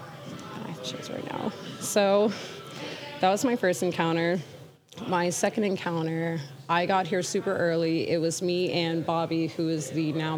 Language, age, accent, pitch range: English, 20-39, American, 160-195 Hz